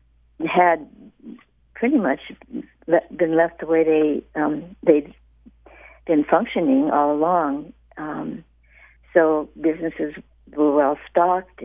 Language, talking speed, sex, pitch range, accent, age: English, 110 wpm, female, 135-180 Hz, American, 60-79